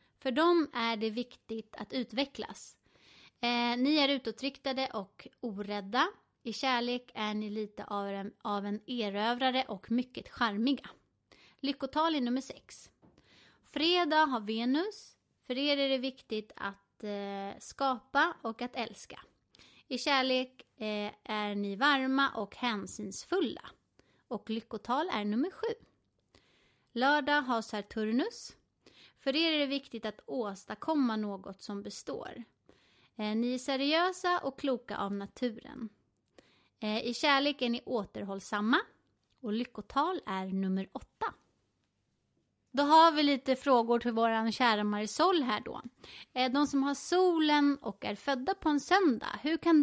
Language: Swedish